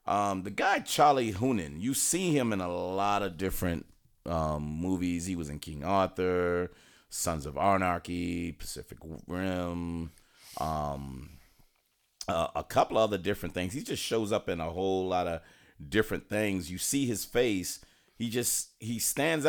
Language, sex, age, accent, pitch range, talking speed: English, male, 40-59, American, 80-105 Hz, 160 wpm